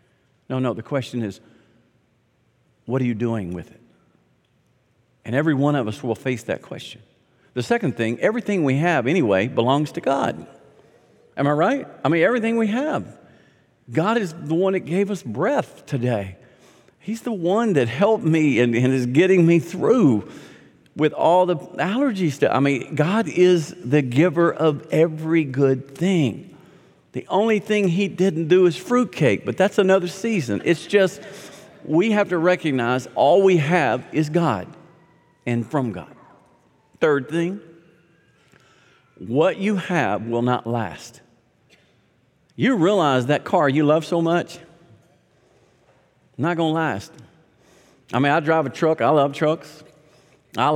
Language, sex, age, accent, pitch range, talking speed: English, male, 50-69, American, 130-175 Hz, 150 wpm